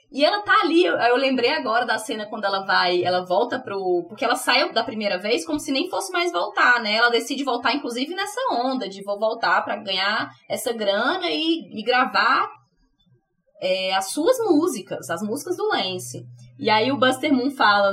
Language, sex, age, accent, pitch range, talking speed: Portuguese, female, 20-39, Brazilian, 200-265 Hz, 190 wpm